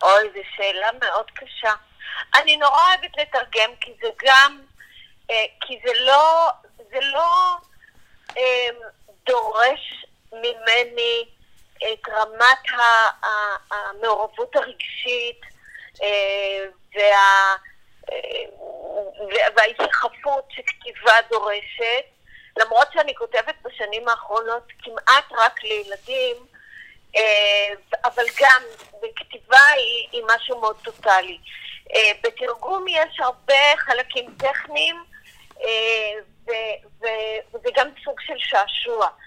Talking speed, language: 85 wpm, Hebrew